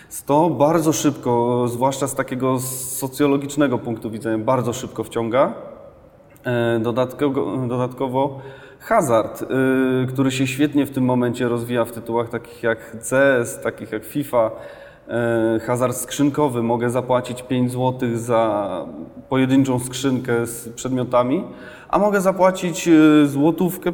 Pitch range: 125-160 Hz